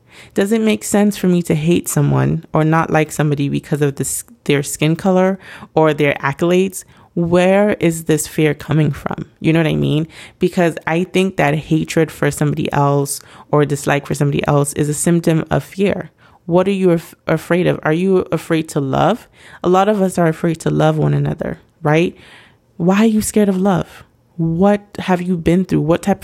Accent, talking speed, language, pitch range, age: American, 195 wpm, English, 150-185 Hz, 30-49